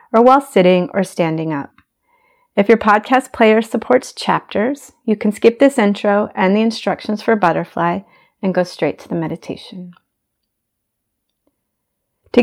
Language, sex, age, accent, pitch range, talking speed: English, female, 30-49, American, 180-245 Hz, 135 wpm